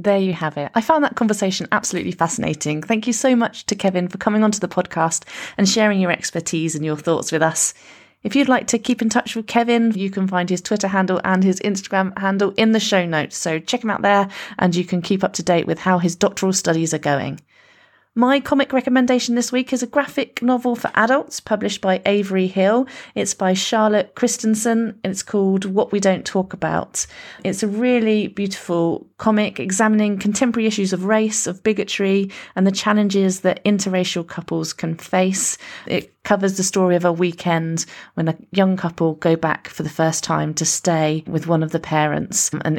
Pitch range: 160-210 Hz